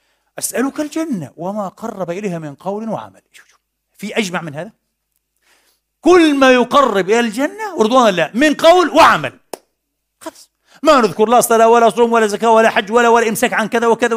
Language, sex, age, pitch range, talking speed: Arabic, male, 50-69, 150-220 Hz, 165 wpm